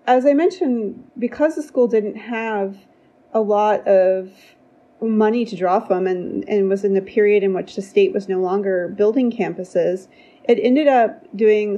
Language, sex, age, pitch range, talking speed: English, female, 30-49, 200-265 Hz, 175 wpm